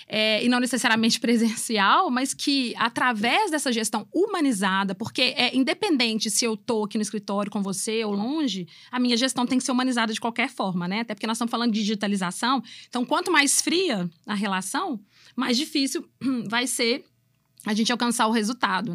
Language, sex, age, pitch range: Portuguese, female, 20-39, 215-270 Hz